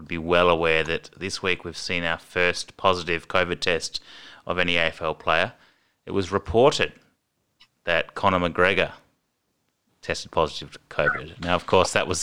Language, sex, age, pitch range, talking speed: English, male, 30-49, 80-95 Hz, 155 wpm